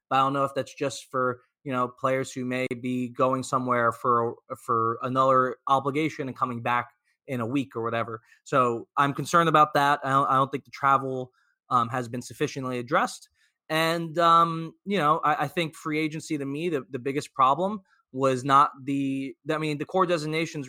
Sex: male